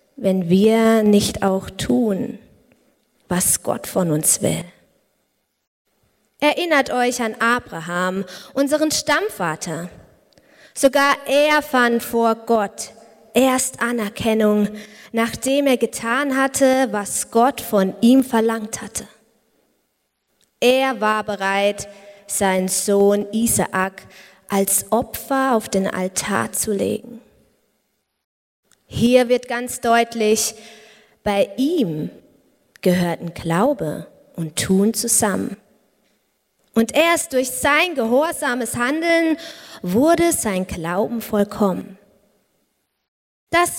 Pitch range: 200-260 Hz